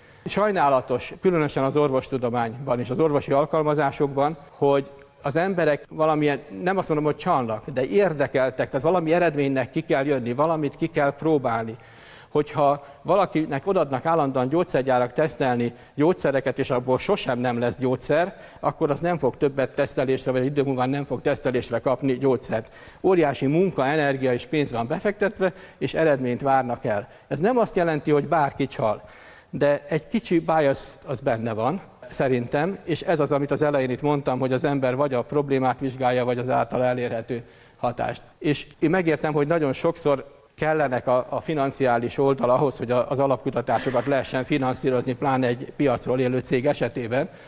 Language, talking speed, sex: Hungarian, 160 wpm, male